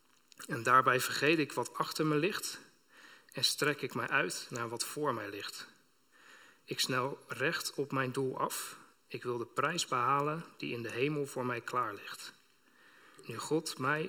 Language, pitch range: Dutch, 120-145 Hz